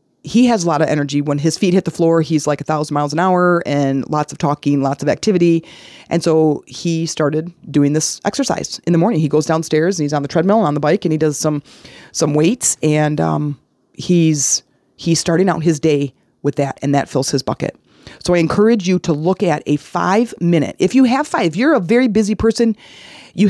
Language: English